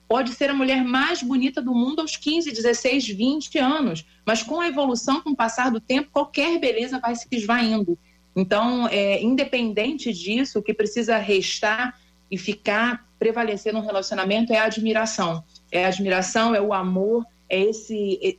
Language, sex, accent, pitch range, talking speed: Portuguese, female, Brazilian, 210-255 Hz, 170 wpm